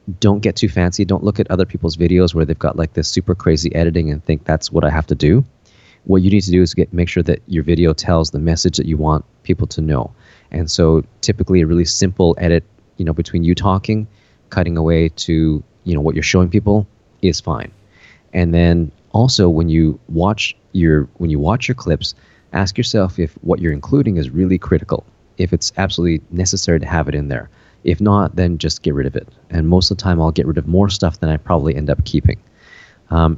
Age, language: 30-49, English